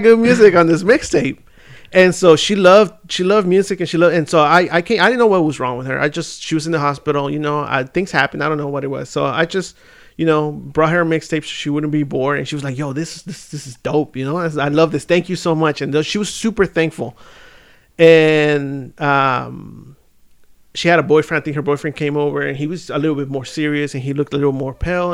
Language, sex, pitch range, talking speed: English, male, 145-185 Hz, 270 wpm